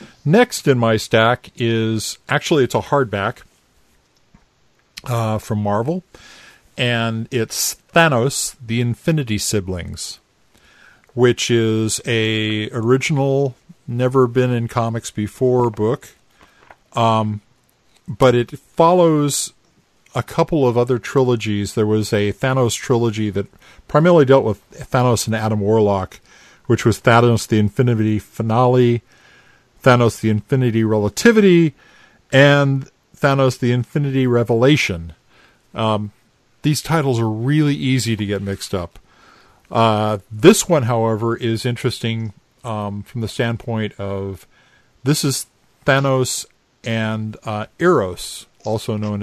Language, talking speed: English, 115 wpm